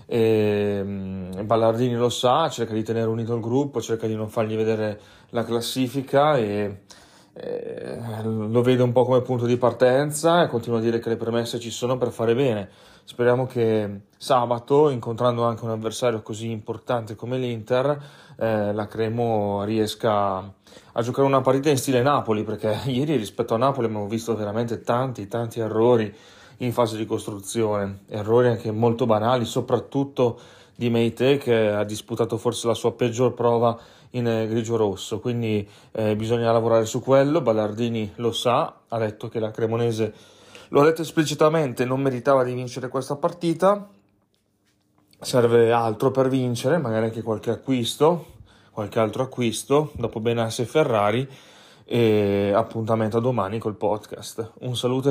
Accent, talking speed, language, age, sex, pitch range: native, 155 wpm, Italian, 30-49, male, 110-125 Hz